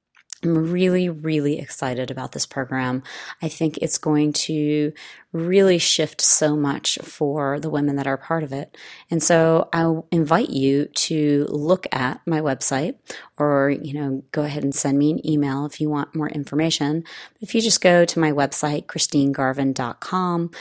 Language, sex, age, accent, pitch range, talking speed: English, female, 30-49, American, 135-160 Hz, 165 wpm